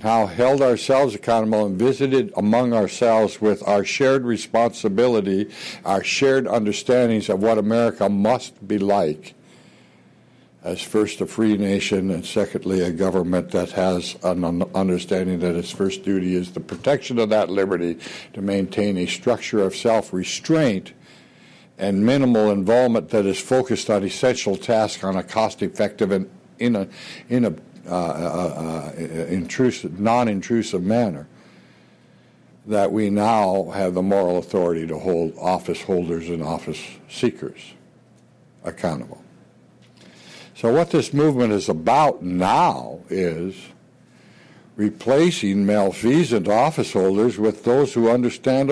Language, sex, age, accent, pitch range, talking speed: English, male, 60-79, American, 90-120 Hz, 125 wpm